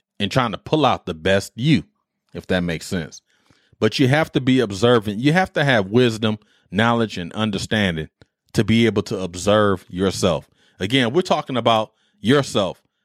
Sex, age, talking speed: male, 30-49, 170 wpm